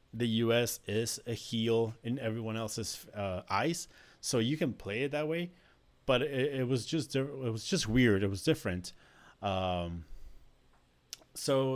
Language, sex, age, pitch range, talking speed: English, male, 30-49, 100-135 Hz, 160 wpm